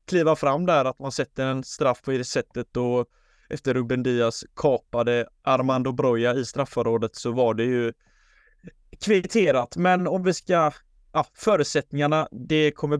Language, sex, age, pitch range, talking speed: Swedish, male, 20-39, 130-150 Hz, 155 wpm